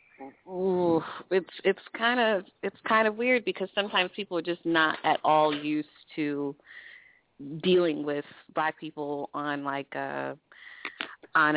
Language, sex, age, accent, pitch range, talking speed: English, female, 30-49, American, 145-170 Hz, 140 wpm